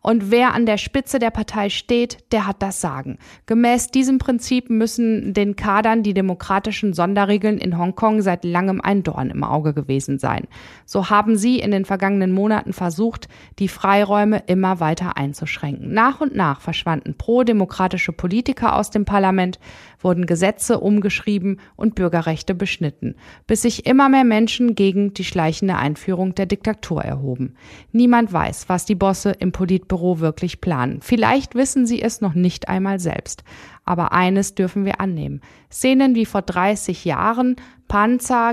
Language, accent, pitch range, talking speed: German, German, 180-225 Hz, 155 wpm